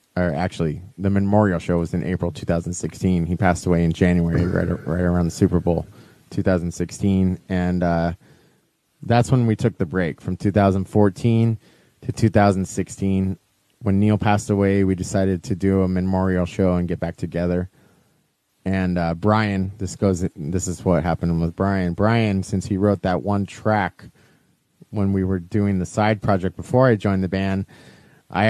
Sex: male